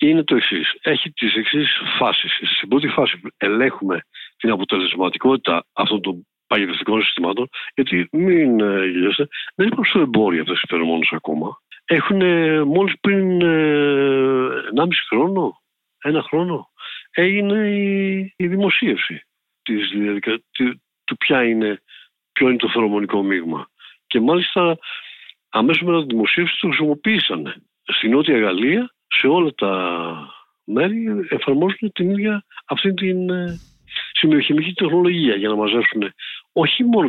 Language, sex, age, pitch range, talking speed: Greek, male, 60-79, 110-185 Hz, 125 wpm